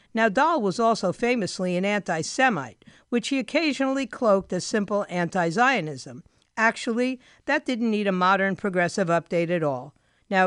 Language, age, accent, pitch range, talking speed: English, 50-69, American, 175-240 Hz, 155 wpm